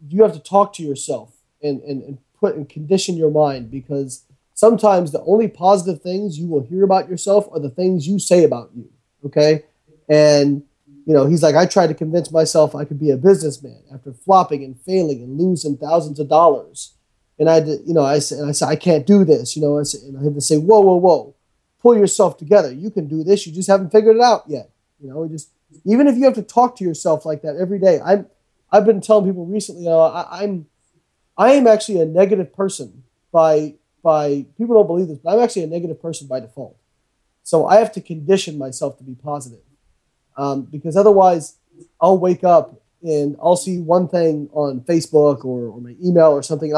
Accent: American